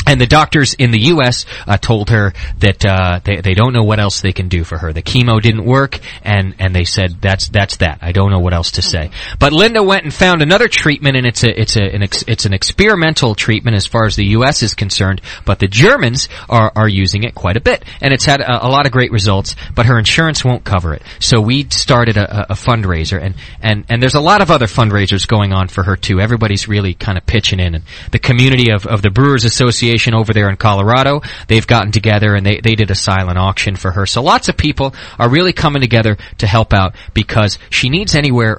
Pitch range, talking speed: 95-125 Hz, 240 wpm